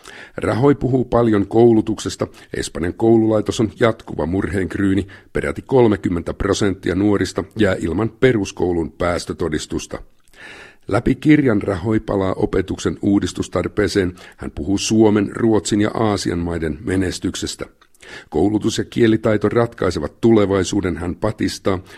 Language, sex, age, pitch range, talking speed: Finnish, male, 50-69, 90-110 Hz, 105 wpm